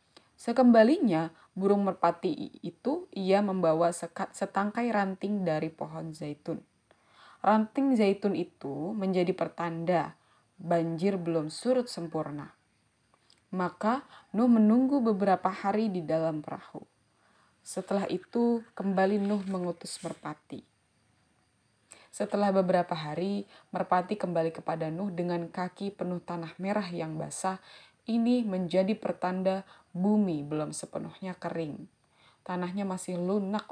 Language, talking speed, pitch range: Indonesian, 105 wpm, 170-200 Hz